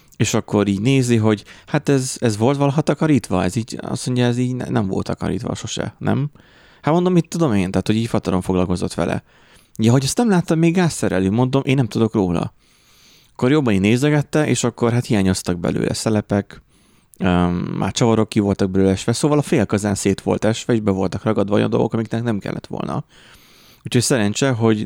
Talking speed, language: 195 wpm, Hungarian